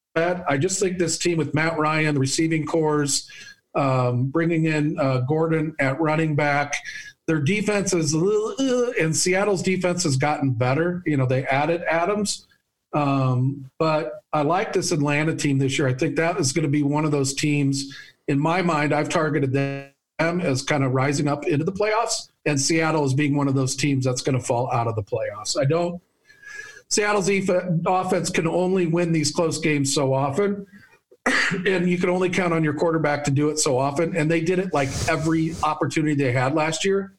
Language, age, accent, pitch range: English, 50-69, American, 140-180 Hz